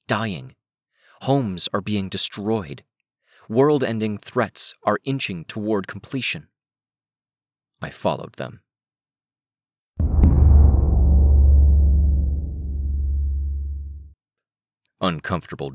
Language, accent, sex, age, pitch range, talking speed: English, American, male, 30-49, 75-115 Hz, 55 wpm